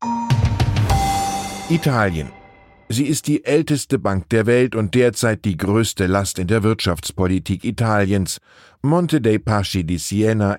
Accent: German